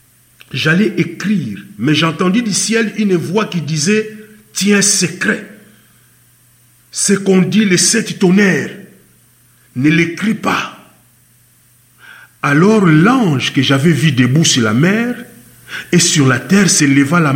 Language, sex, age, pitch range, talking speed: English, male, 50-69, 140-200 Hz, 130 wpm